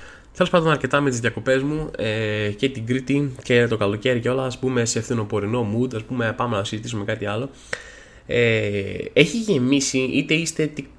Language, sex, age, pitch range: Greek, male, 20-39, 110-135 Hz